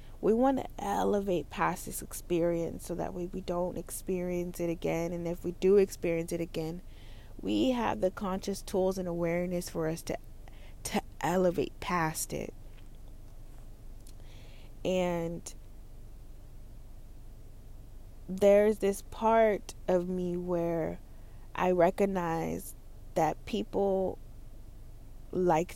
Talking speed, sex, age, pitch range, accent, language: 110 wpm, female, 20-39, 110-185 Hz, American, English